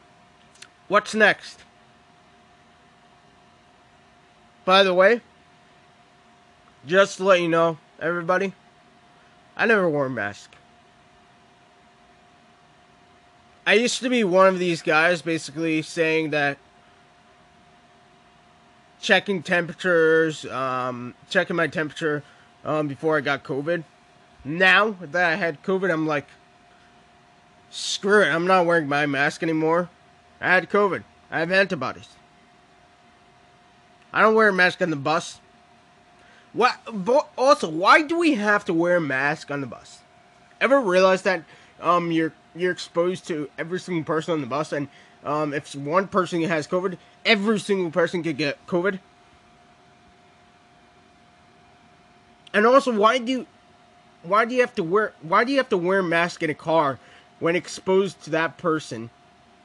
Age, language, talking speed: 20-39, English, 135 wpm